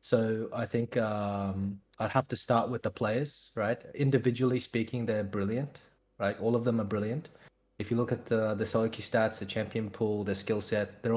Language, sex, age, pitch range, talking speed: English, male, 20-39, 105-125 Hz, 205 wpm